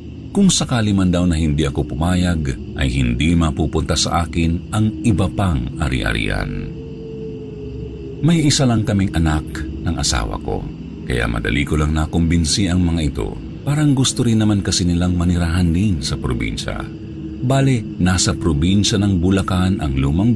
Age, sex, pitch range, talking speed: 50-69, male, 75-105 Hz, 150 wpm